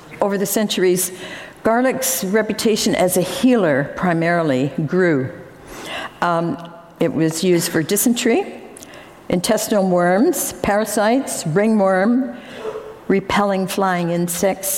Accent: American